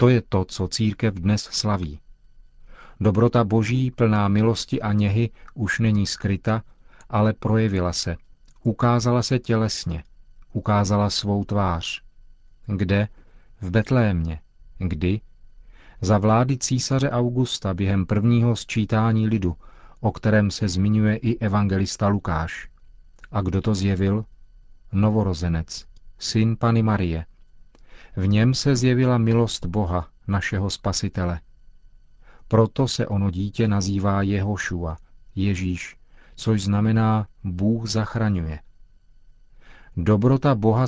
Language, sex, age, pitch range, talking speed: Czech, male, 40-59, 95-115 Hz, 105 wpm